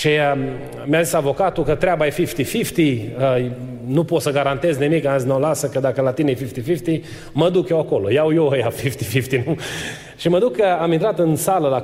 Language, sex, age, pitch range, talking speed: Romanian, male, 30-49, 125-165 Hz, 230 wpm